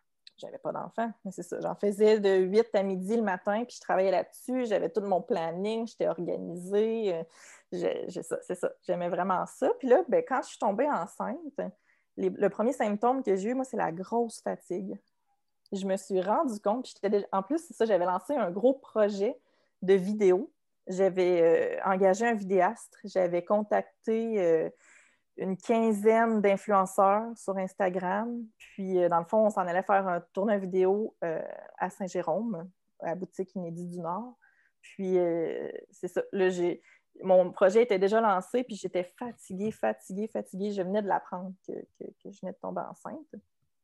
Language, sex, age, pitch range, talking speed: French, female, 30-49, 185-230 Hz, 180 wpm